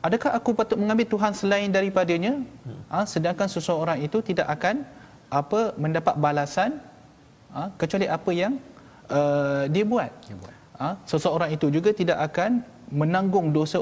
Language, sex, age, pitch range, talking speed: Malayalam, male, 30-49, 145-205 Hz, 150 wpm